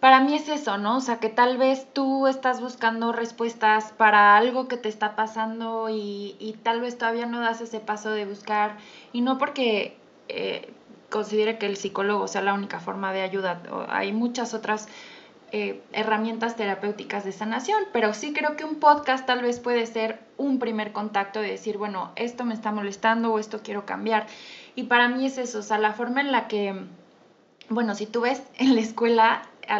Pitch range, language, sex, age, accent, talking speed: 210-250 Hz, Spanish, female, 20-39, Mexican, 195 wpm